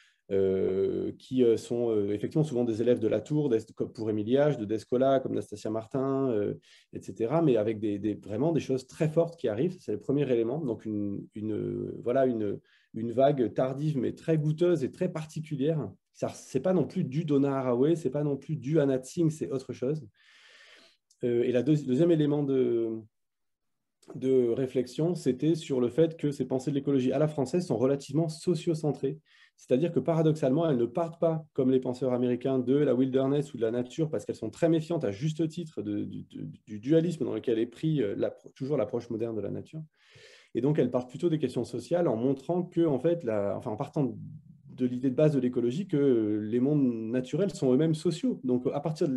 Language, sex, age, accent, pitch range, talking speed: French, male, 20-39, French, 120-160 Hz, 205 wpm